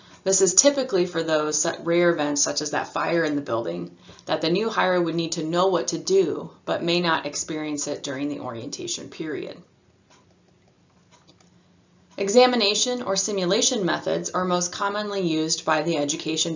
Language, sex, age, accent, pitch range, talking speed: English, female, 20-39, American, 160-205 Hz, 165 wpm